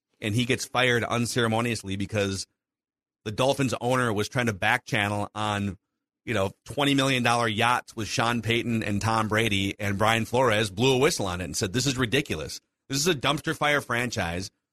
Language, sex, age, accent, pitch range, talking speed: English, male, 30-49, American, 110-140 Hz, 180 wpm